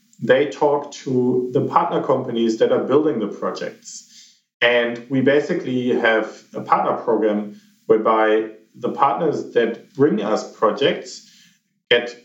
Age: 50-69